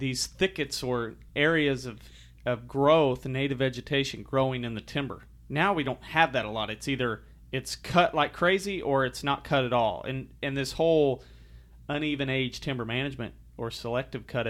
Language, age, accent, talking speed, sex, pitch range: English, 40-59, American, 180 wpm, male, 115-145 Hz